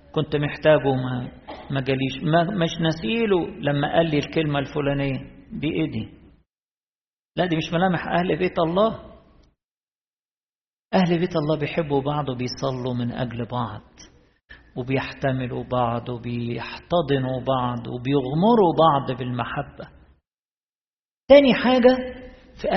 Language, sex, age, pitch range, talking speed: Arabic, male, 50-69, 140-190 Hz, 110 wpm